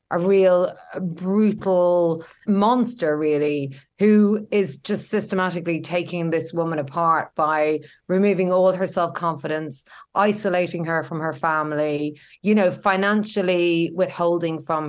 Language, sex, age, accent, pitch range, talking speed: English, female, 30-49, Irish, 160-210 Hz, 115 wpm